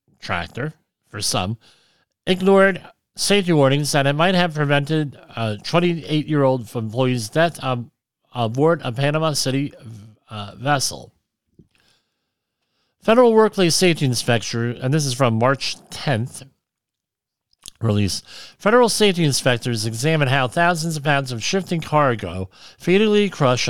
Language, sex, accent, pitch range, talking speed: English, male, American, 120-160 Hz, 120 wpm